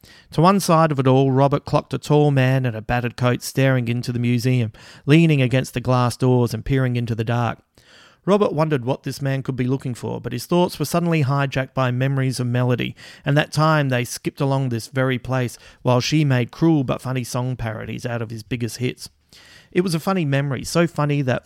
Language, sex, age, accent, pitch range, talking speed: English, male, 40-59, Australian, 120-145 Hz, 220 wpm